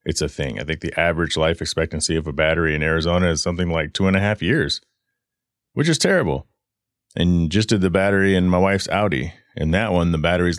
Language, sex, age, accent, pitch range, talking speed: English, male, 30-49, American, 80-100 Hz, 220 wpm